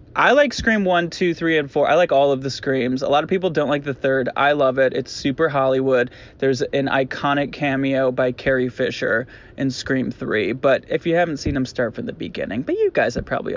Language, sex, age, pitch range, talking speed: English, male, 20-39, 125-150 Hz, 235 wpm